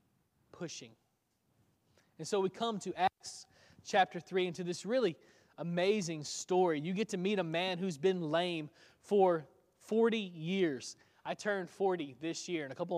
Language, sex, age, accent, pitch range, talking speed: English, male, 20-39, American, 165-195 Hz, 155 wpm